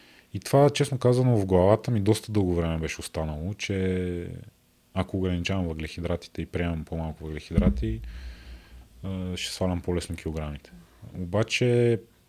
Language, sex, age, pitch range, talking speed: Bulgarian, male, 30-49, 85-110 Hz, 120 wpm